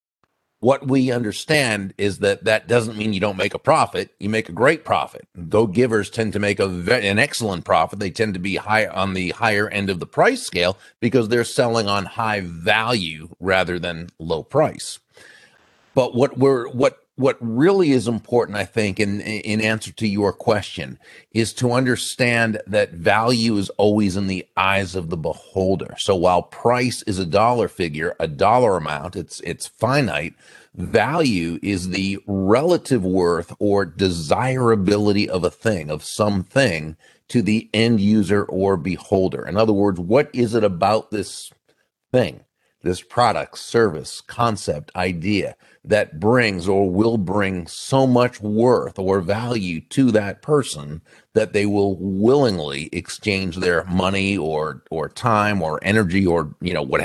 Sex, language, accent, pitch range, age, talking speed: male, English, American, 95-115 Hz, 40-59, 160 wpm